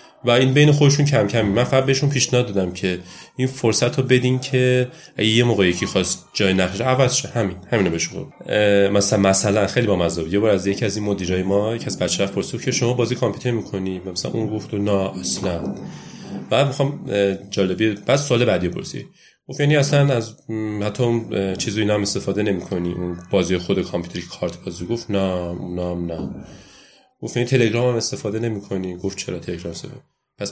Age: 30-49